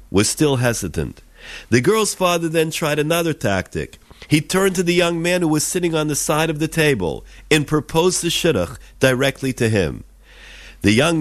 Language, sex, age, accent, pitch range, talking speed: English, male, 50-69, American, 120-160 Hz, 180 wpm